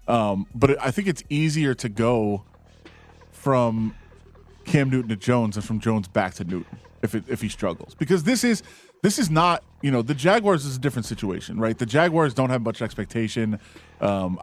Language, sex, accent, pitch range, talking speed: English, male, American, 110-140 Hz, 190 wpm